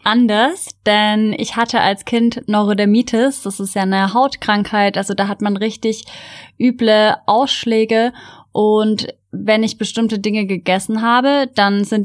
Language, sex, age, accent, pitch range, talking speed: German, female, 10-29, German, 205-230 Hz, 140 wpm